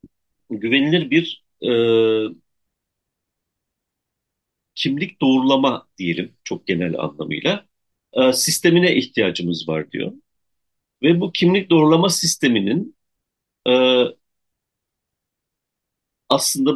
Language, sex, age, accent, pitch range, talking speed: Turkish, male, 50-69, native, 105-170 Hz, 75 wpm